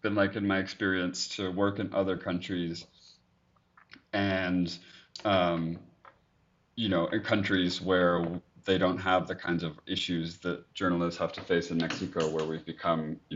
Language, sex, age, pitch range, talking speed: English, male, 30-49, 80-90 Hz, 155 wpm